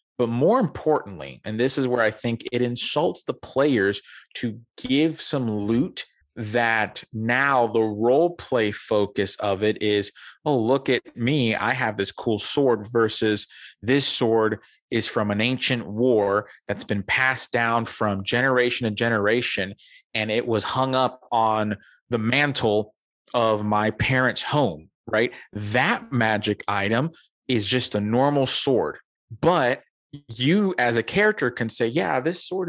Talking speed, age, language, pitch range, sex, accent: 150 wpm, 30-49, English, 110-135 Hz, male, American